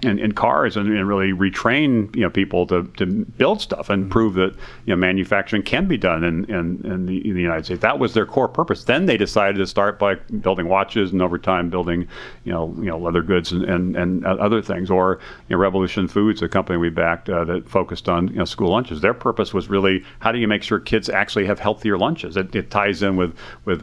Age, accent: 40-59, American